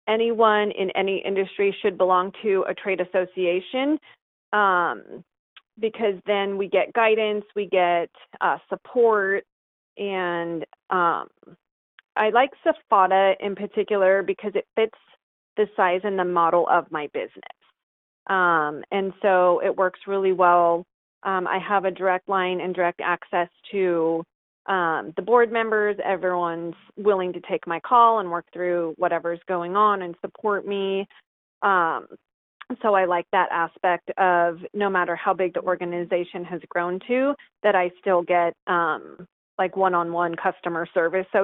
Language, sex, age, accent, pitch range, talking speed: English, female, 30-49, American, 175-215 Hz, 145 wpm